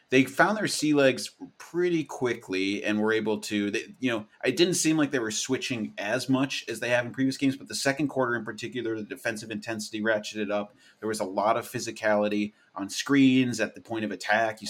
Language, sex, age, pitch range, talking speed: English, male, 30-49, 105-135 Hz, 220 wpm